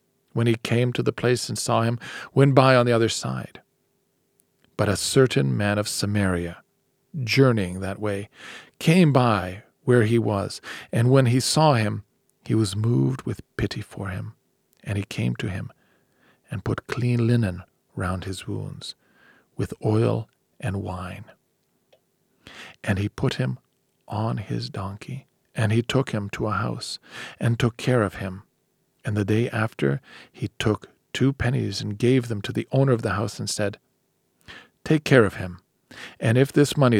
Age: 50-69